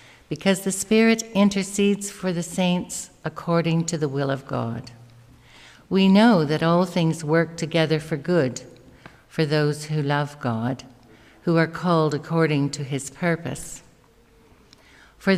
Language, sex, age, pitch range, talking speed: English, female, 60-79, 140-185 Hz, 135 wpm